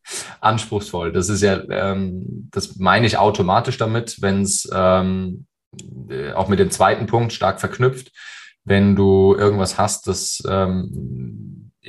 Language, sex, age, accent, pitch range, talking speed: German, male, 20-39, German, 90-100 Hz, 130 wpm